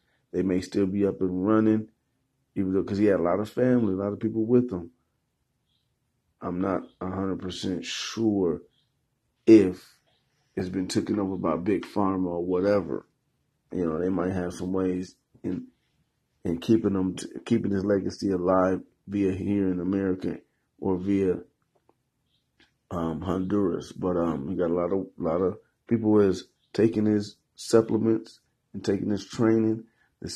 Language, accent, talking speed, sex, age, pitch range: English, American, 160 wpm, male, 30-49, 90-105 Hz